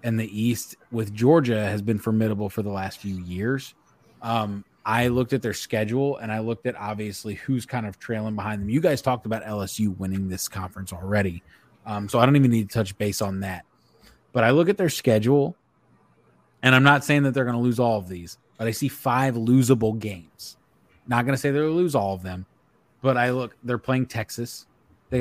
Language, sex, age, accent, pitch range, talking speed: English, male, 20-39, American, 105-130 Hz, 215 wpm